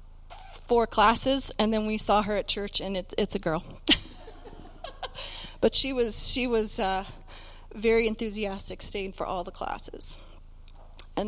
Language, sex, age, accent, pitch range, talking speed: English, female, 30-49, American, 195-245 Hz, 150 wpm